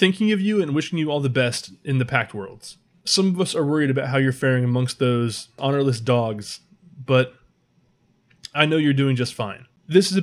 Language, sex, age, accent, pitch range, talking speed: English, male, 20-39, American, 120-150 Hz, 210 wpm